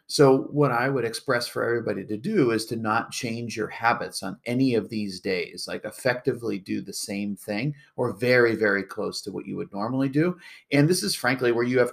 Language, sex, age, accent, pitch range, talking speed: English, male, 40-59, American, 105-135 Hz, 215 wpm